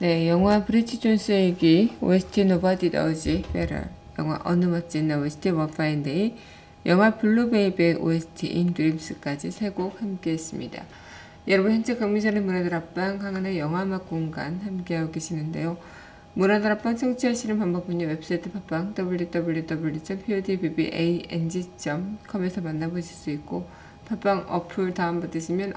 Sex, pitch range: female, 165-205 Hz